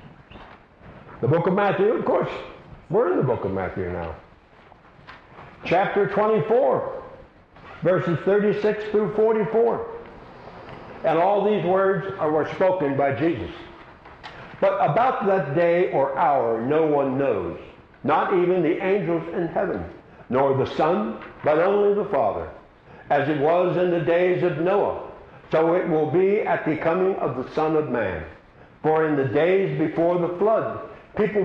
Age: 60-79